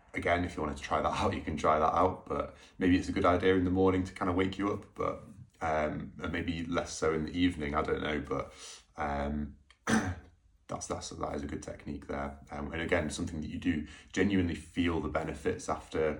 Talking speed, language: 225 wpm, English